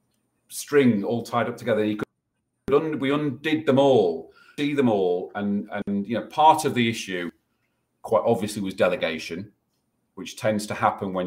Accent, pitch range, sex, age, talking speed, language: British, 100-125 Hz, male, 40-59, 155 wpm, English